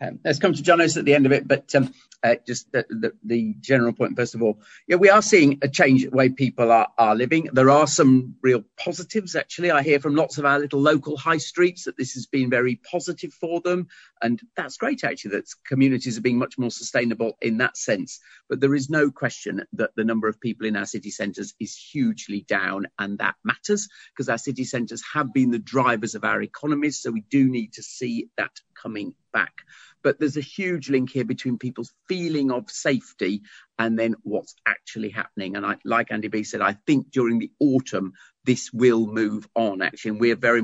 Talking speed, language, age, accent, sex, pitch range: 220 wpm, English, 40-59, British, male, 115-150 Hz